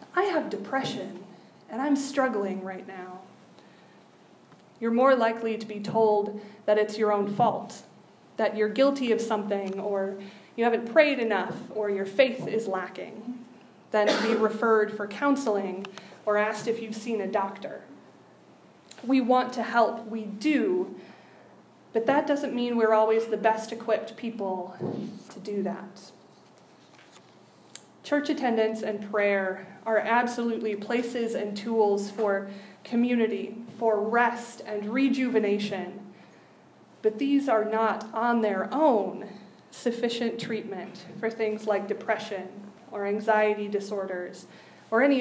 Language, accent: English, American